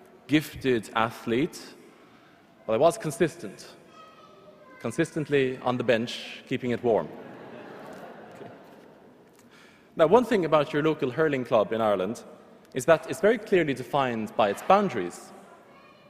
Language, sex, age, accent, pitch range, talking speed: English, male, 20-39, Norwegian, 135-190 Hz, 125 wpm